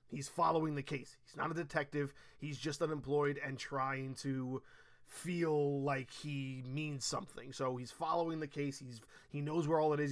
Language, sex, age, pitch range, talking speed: English, male, 20-39, 140-170 Hz, 185 wpm